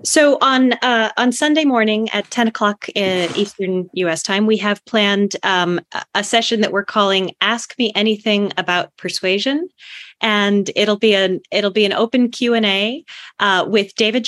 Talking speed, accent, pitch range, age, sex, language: 170 wpm, American, 170-215 Hz, 30-49, female, English